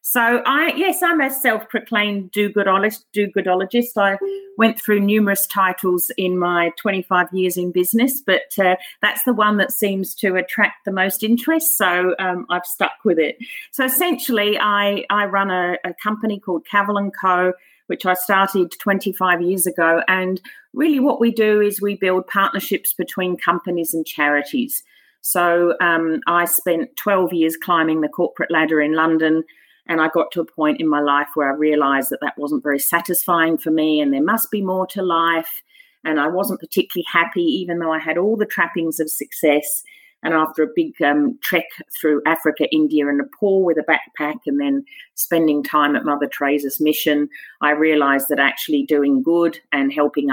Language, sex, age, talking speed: English, female, 50-69, 180 wpm